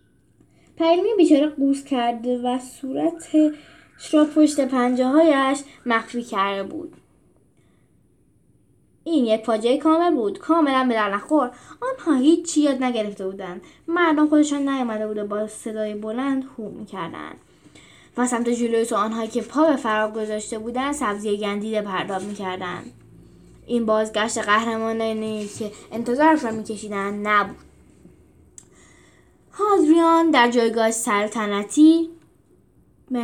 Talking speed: 110 wpm